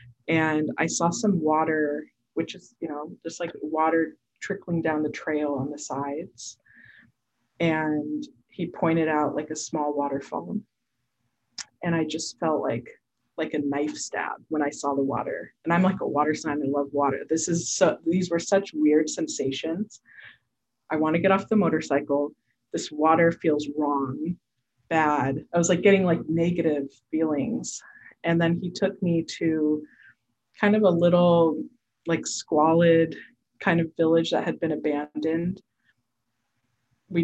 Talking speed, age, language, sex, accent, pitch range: 155 wpm, 20-39, English, female, American, 140-165 Hz